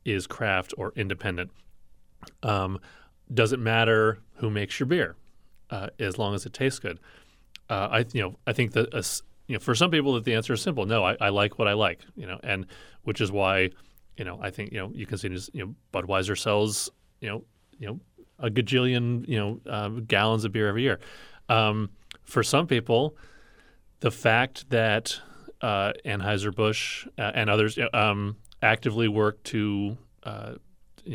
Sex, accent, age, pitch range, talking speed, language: male, American, 30-49, 100-120 Hz, 160 wpm, English